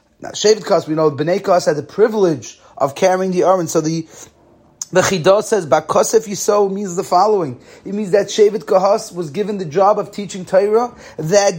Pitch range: 185-225 Hz